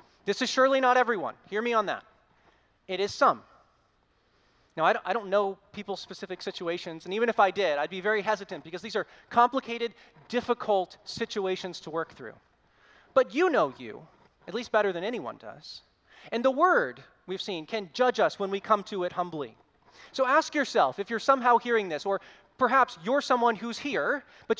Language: English